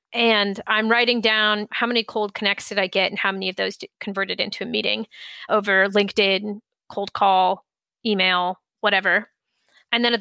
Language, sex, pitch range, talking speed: English, female, 195-230 Hz, 170 wpm